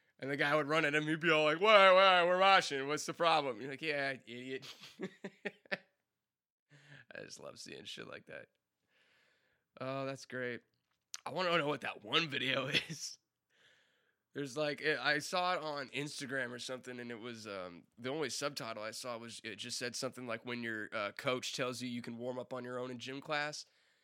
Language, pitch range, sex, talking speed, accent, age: English, 120-150 Hz, male, 205 wpm, American, 20-39